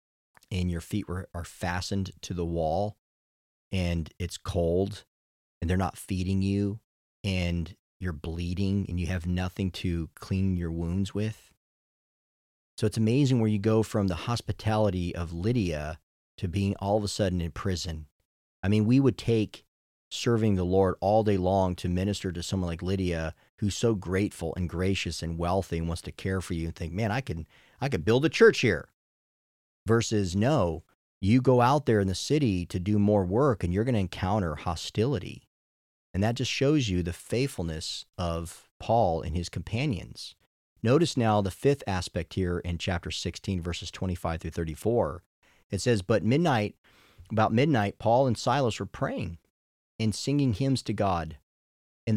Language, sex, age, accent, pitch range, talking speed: English, male, 40-59, American, 85-110 Hz, 175 wpm